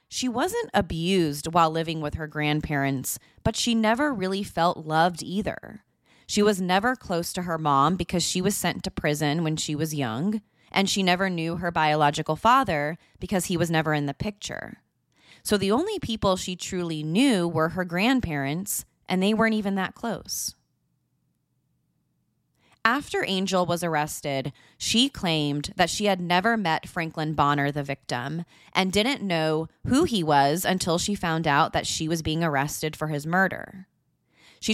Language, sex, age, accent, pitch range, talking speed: English, female, 20-39, American, 155-205 Hz, 165 wpm